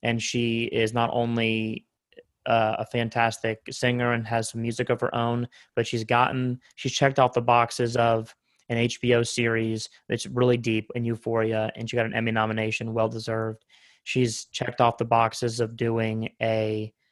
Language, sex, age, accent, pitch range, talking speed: English, male, 20-39, American, 110-120 Hz, 170 wpm